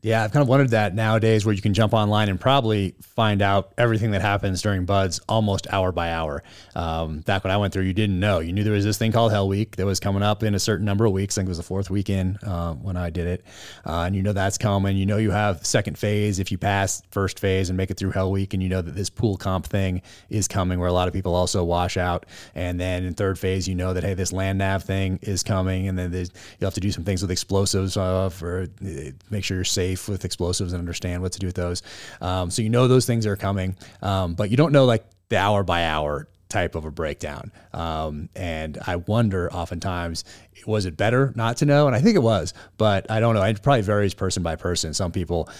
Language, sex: English, male